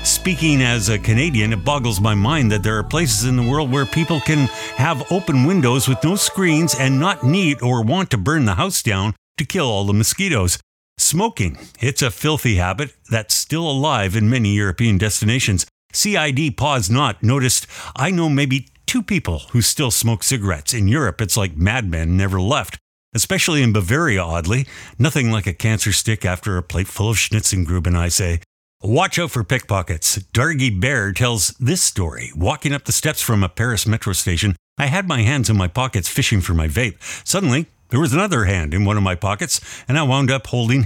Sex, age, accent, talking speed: male, 50-69, American, 195 wpm